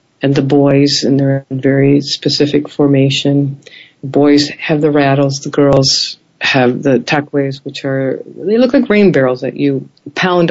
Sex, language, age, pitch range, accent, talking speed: female, English, 50-69, 140-180 Hz, American, 160 wpm